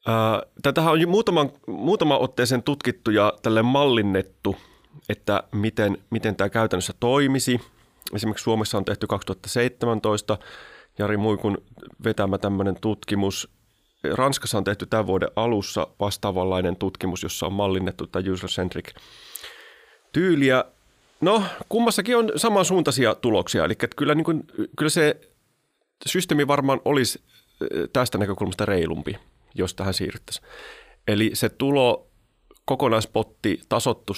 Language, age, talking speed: Finnish, 30-49, 110 wpm